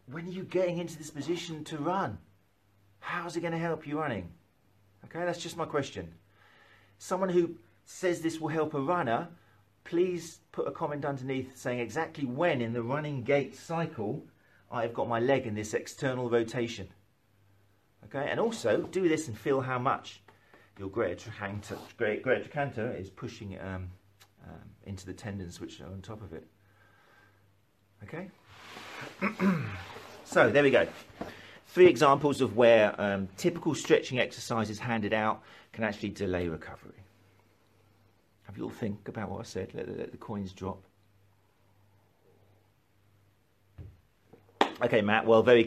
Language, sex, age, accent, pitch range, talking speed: English, male, 40-59, British, 100-140 Hz, 145 wpm